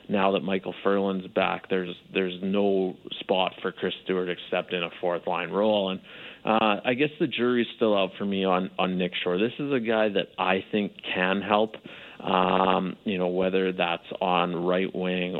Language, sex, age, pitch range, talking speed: English, male, 30-49, 95-110 Hz, 190 wpm